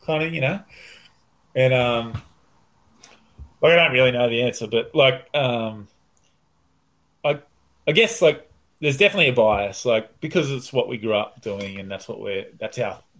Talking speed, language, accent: 175 wpm, English, Australian